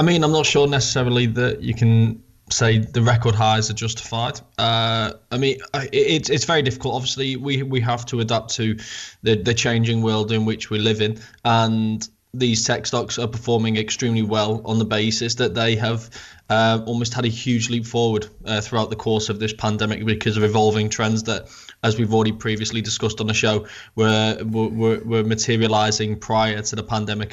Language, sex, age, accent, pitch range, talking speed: English, male, 20-39, British, 110-120 Hz, 190 wpm